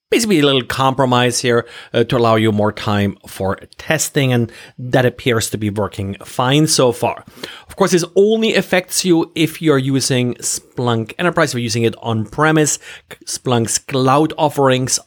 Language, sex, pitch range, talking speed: English, male, 115-160 Hz, 165 wpm